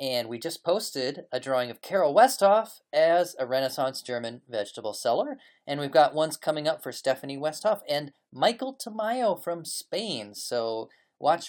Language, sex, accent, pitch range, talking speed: English, male, American, 130-200 Hz, 160 wpm